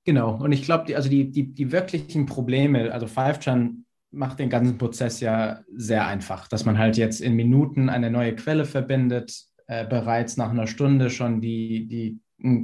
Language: German